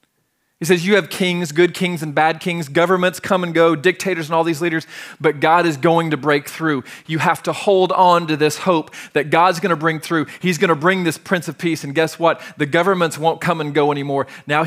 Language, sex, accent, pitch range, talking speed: English, male, American, 150-185 Hz, 235 wpm